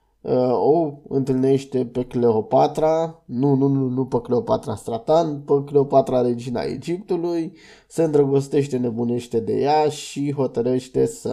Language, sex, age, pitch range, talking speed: Romanian, male, 20-39, 125-145 Hz, 120 wpm